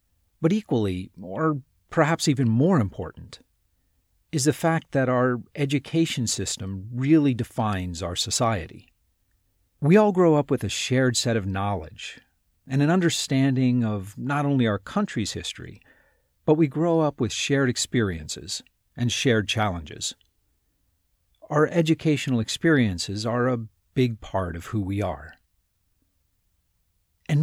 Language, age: English, 50-69